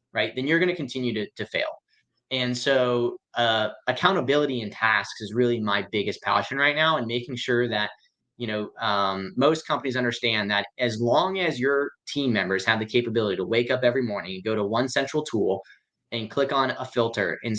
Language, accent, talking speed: English, American, 200 wpm